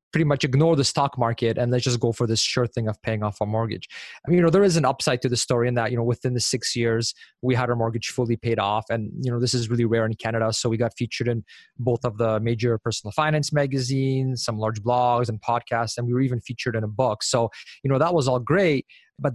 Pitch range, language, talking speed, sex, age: 115-130 Hz, English, 270 wpm, male, 20-39